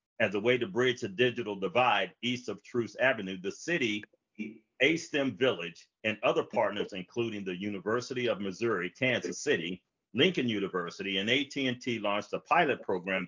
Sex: male